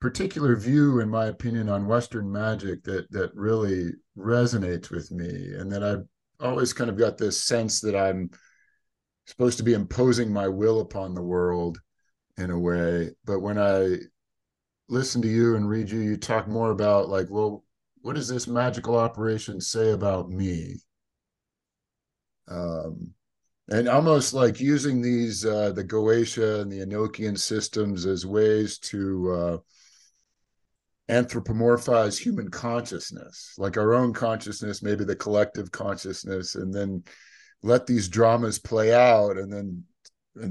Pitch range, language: 95-115 Hz, English